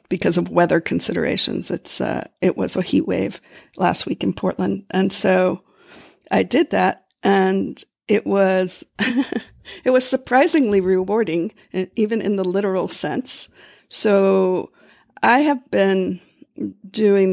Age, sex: 50-69, female